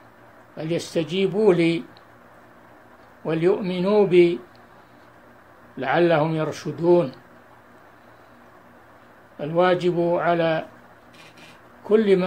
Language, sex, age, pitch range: Arabic, male, 60-79, 155-185 Hz